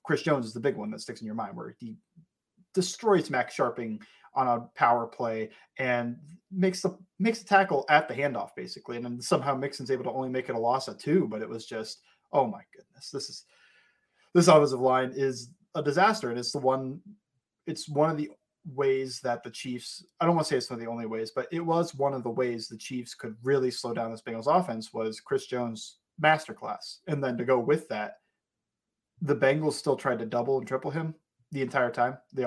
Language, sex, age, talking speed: English, male, 30-49, 220 wpm